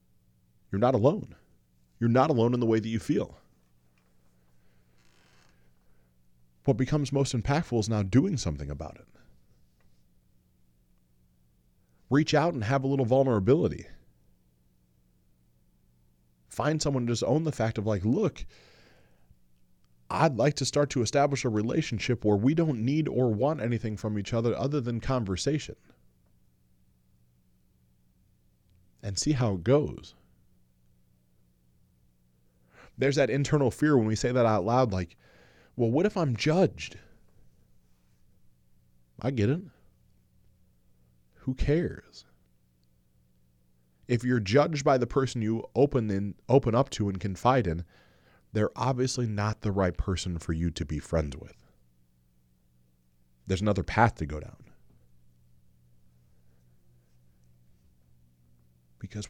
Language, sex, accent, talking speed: English, male, American, 120 wpm